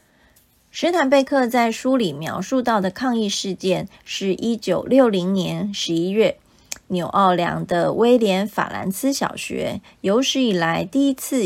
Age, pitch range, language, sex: 20-39, 185-245 Hz, Chinese, female